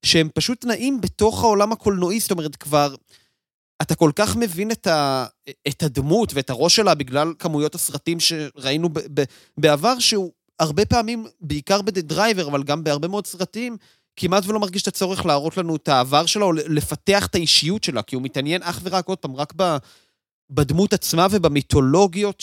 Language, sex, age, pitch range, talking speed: Hebrew, male, 30-49, 145-185 Hz, 175 wpm